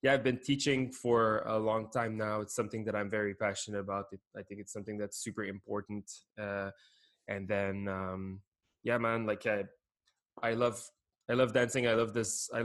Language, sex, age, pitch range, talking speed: English, male, 20-39, 100-115 Hz, 190 wpm